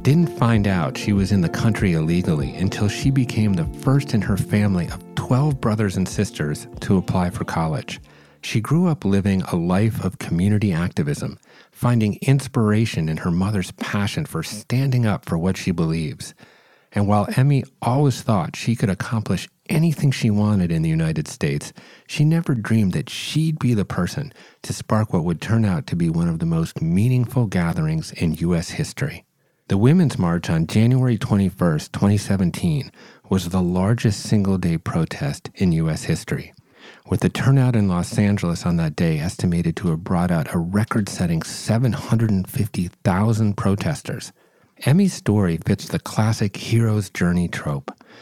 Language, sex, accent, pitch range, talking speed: English, male, American, 95-130 Hz, 160 wpm